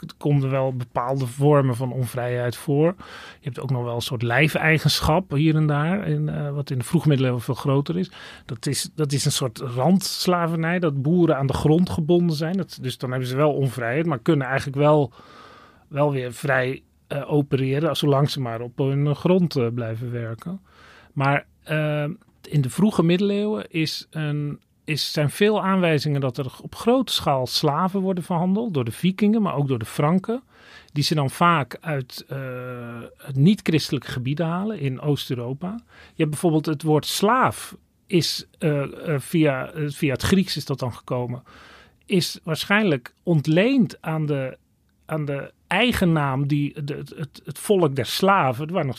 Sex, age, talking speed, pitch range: male, 40-59, 175 wpm, 135-170 Hz